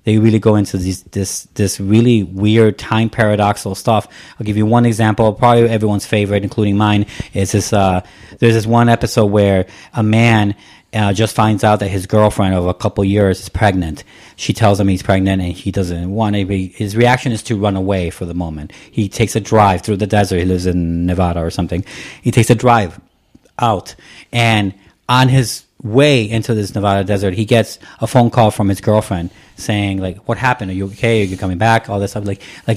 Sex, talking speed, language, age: male, 210 wpm, English, 30-49